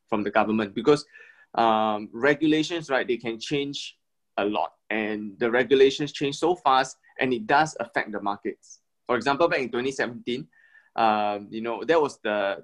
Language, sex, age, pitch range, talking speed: English, male, 20-39, 110-155 Hz, 170 wpm